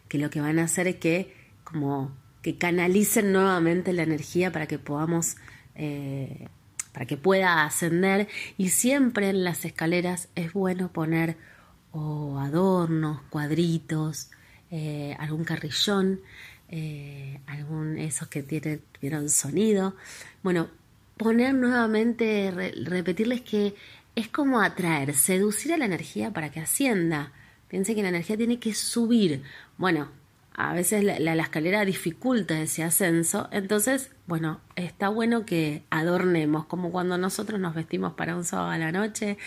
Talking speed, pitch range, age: 140 wpm, 155-195 Hz, 30-49